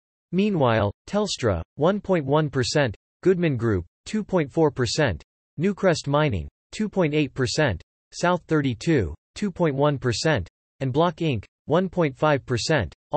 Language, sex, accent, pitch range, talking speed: English, male, American, 120-160 Hz, 75 wpm